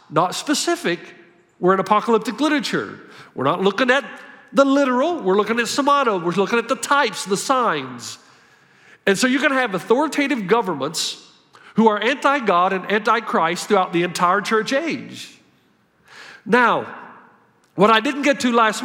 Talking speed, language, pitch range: 155 wpm, English, 205-280 Hz